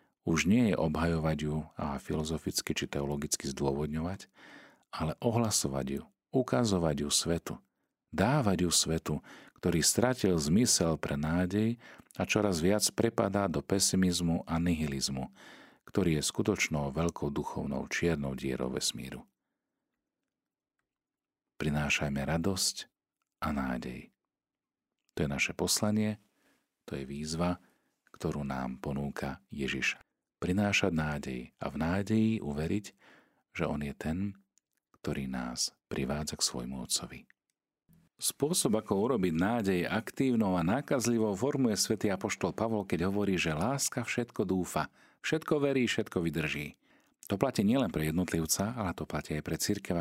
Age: 40-59